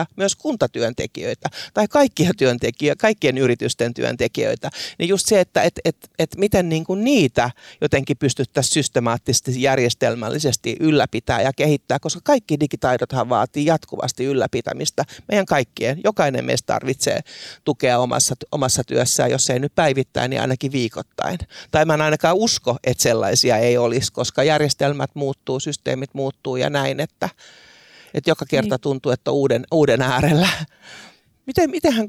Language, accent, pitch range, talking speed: Finnish, native, 130-160 Hz, 140 wpm